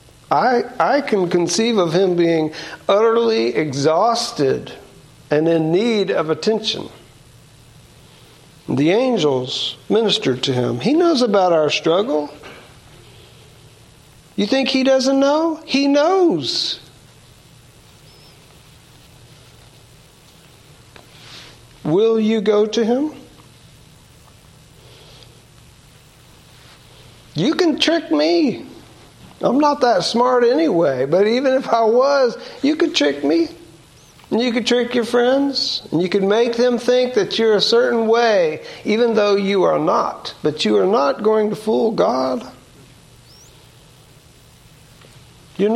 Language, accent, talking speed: English, American, 110 wpm